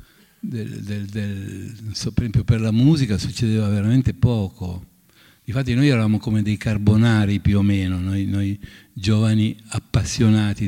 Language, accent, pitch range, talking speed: Italian, native, 105-130 Hz, 120 wpm